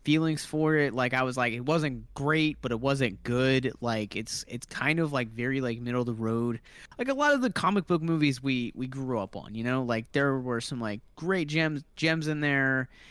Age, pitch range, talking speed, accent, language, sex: 20-39, 115-145 Hz, 235 wpm, American, English, male